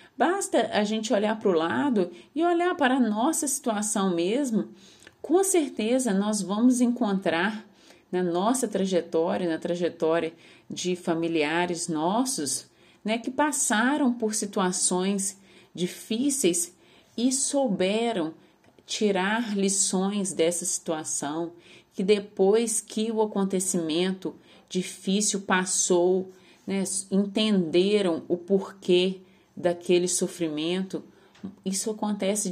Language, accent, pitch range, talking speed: Portuguese, Brazilian, 175-215 Hz, 100 wpm